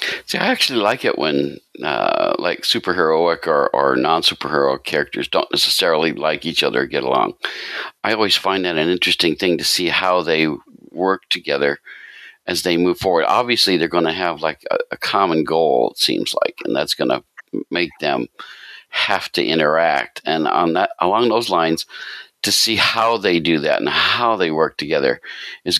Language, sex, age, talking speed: English, male, 60-79, 185 wpm